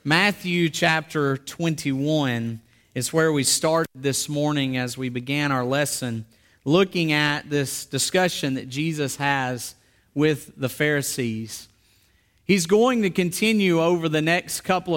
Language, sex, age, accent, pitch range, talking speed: English, male, 40-59, American, 155-220 Hz, 130 wpm